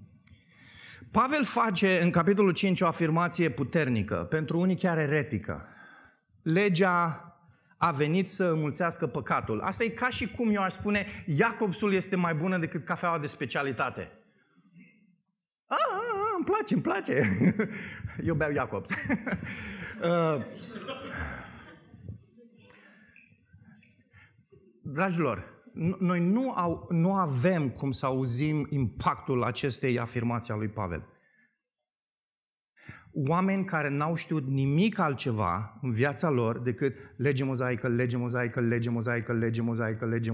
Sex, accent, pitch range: male, native, 130-185 Hz